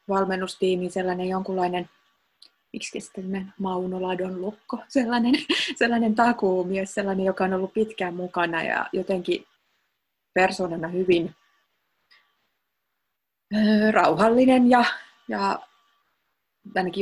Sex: female